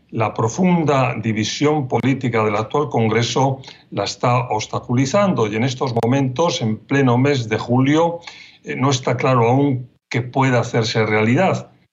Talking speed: 135 wpm